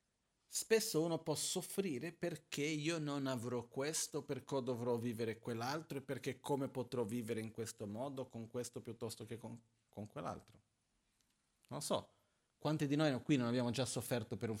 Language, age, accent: Italian, 40-59, native